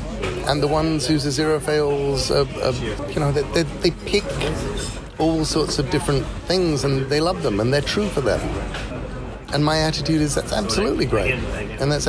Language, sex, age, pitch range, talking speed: English, male, 40-59, 120-150 Hz, 180 wpm